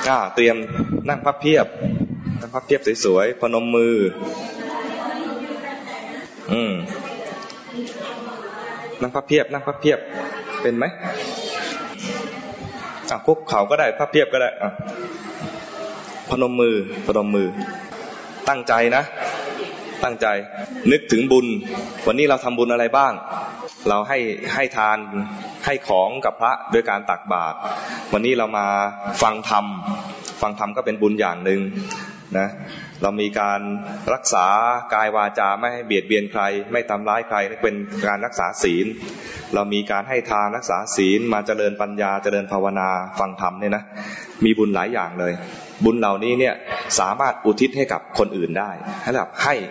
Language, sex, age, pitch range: English, male, 20-39, 100-130 Hz